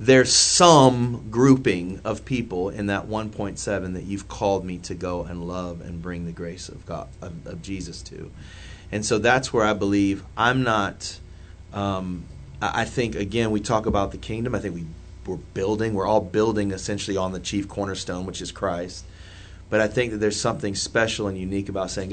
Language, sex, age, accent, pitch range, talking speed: English, male, 30-49, American, 90-105 Hz, 190 wpm